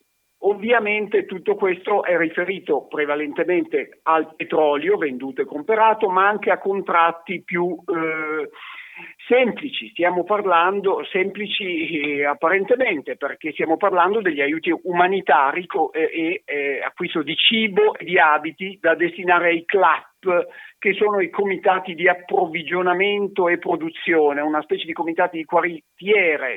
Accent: native